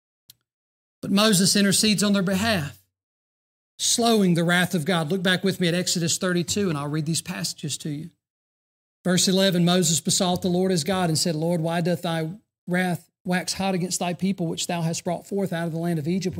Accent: American